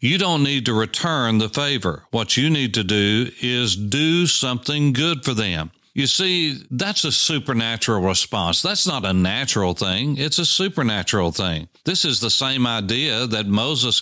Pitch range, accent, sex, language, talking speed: 110-145 Hz, American, male, English, 170 wpm